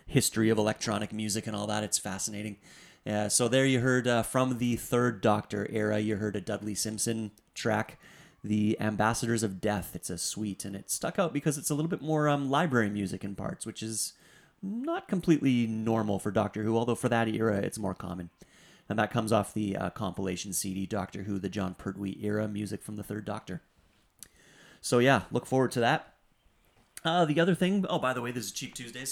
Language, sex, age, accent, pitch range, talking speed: English, male, 30-49, American, 105-125 Hz, 205 wpm